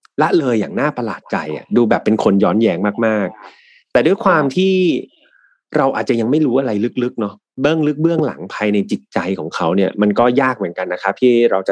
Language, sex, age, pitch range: Thai, male, 30-49, 105-140 Hz